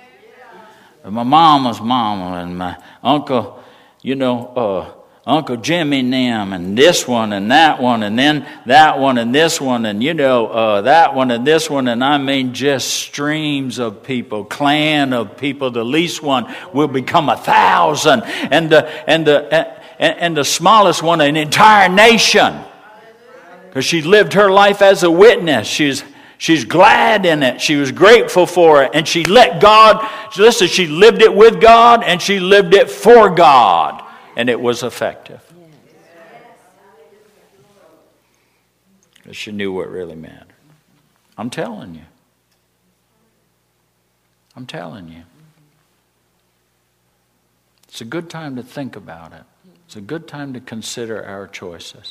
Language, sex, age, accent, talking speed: English, male, 60-79, American, 145 wpm